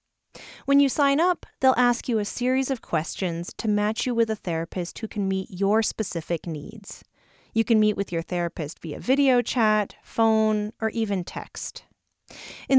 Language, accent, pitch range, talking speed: English, American, 180-235 Hz, 175 wpm